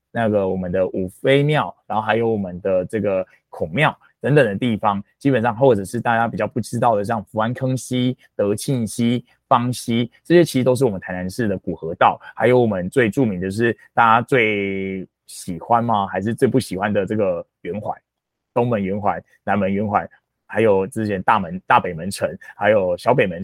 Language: Chinese